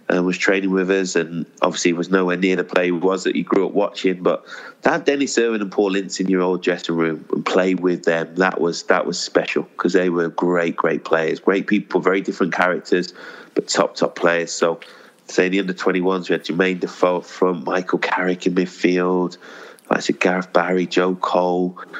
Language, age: English, 30-49